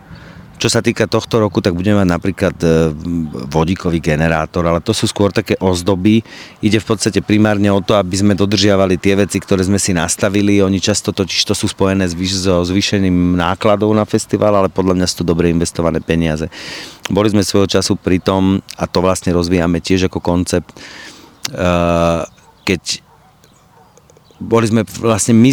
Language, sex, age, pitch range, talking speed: Slovak, male, 40-59, 85-100 Hz, 160 wpm